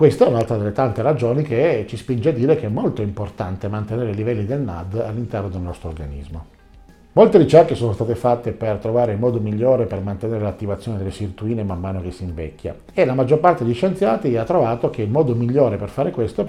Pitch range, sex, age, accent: 105-130 Hz, male, 50-69, native